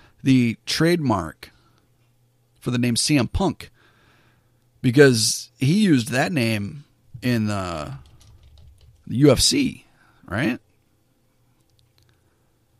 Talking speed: 75 wpm